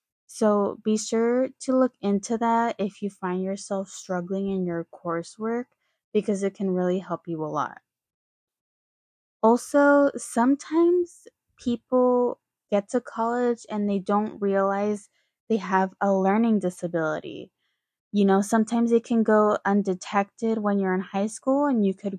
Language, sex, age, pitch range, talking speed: English, female, 20-39, 190-225 Hz, 145 wpm